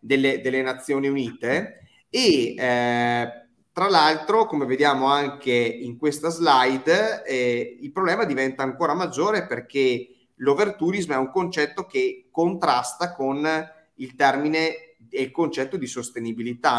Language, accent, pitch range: Italian, native, 130-165 Hz